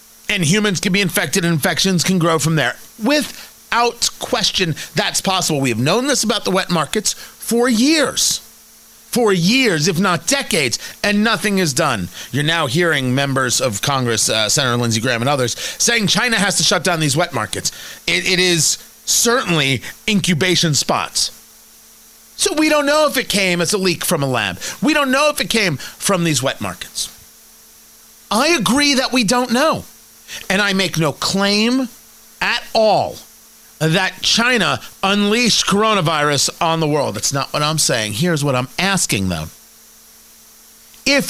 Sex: male